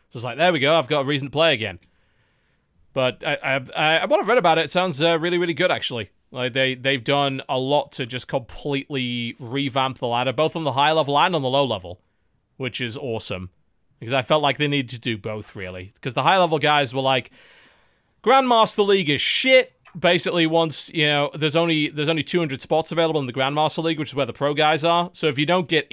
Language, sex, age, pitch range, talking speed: English, male, 30-49, 130-160 Hz, 235 wpm